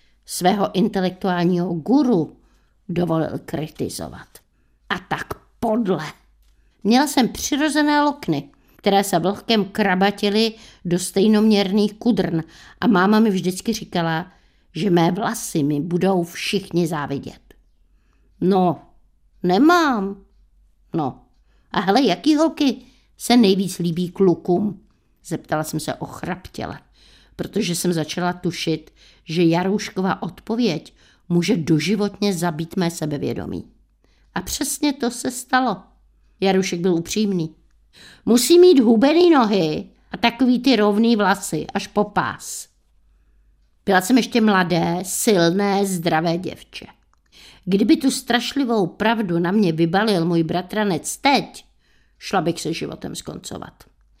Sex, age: female, 50-69